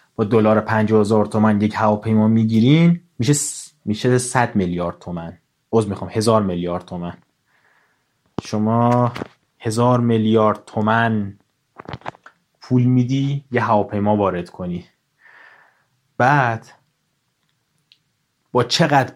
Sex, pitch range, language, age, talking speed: male, 110-145 Hz, Persian, 30-49, 95 wpm